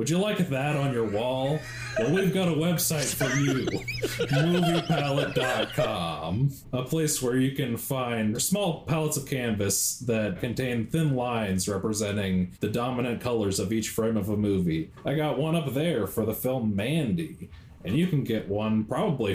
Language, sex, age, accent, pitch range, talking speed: English, male, 30-49, American, 105-150 Hz, 170 wpm